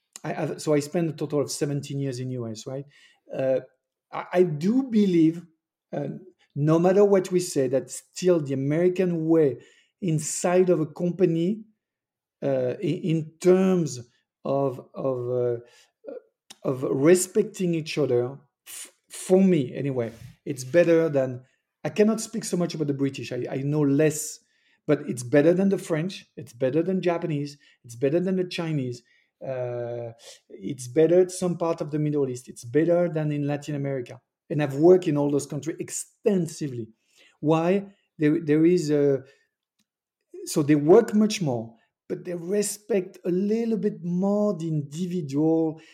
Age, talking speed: 50-69, 155 wpm